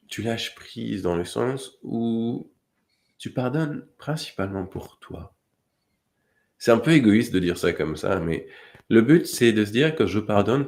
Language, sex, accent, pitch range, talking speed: French, male, French, 90-130 Hz, 175 wpm